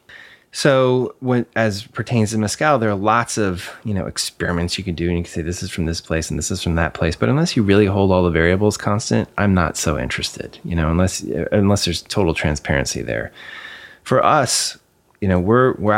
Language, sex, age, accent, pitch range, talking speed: English, male, 30-49, American, 85-105 Hz, 215 wpm